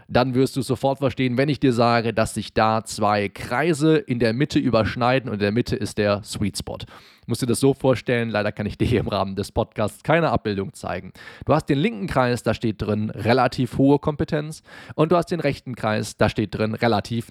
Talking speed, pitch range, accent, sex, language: 225 wpm, 110-145 Hz, German, male, German